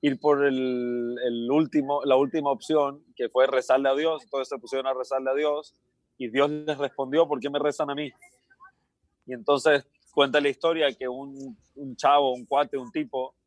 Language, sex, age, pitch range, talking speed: Spanish, male, 30-49, 125-150 Hz, 190 wpm